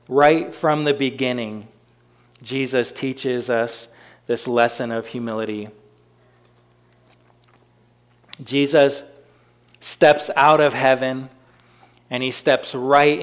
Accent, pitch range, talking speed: American, 115-140 Hz, 90 wpm